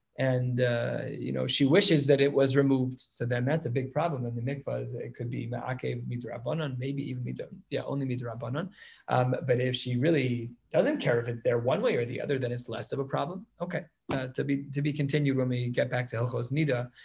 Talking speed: 230 wpm